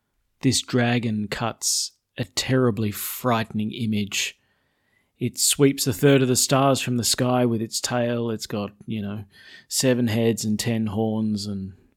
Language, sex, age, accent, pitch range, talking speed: English, male, 30-49, Australian, 105-130 Hz, 150 wpm